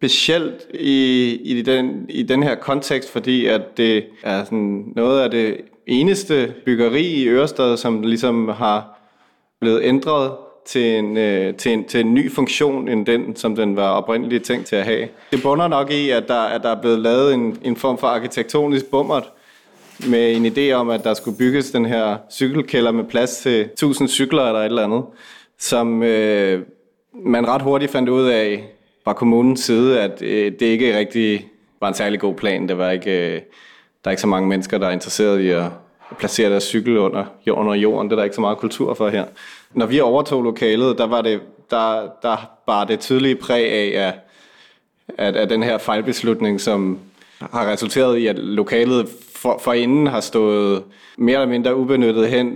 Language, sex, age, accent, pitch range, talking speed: Danish, male, 30-49, native, 105-130 Hz, 185 wpm